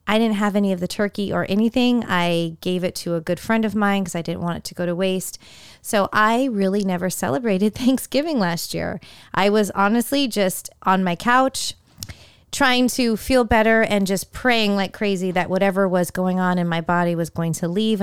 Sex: female